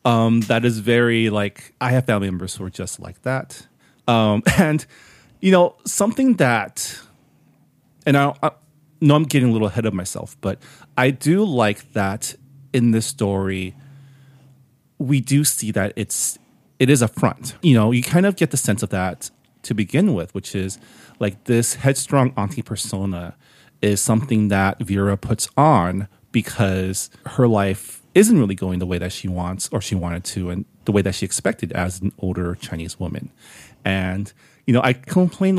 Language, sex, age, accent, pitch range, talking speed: English, male, 30-49, American, 100-135 Hz, 175 wpm